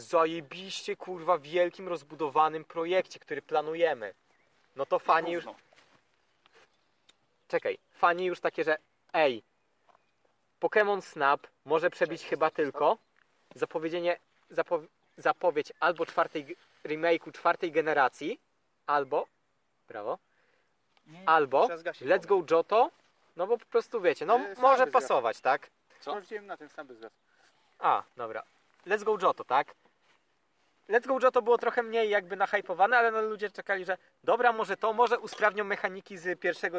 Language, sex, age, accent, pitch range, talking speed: Polish, male, 20-39, native, 170-235 Hz, 130 wpm